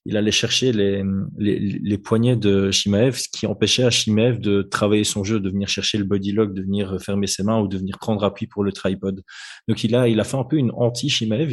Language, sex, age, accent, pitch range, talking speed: French, male, 20-39, French, 100-115 Hz, 245 wpm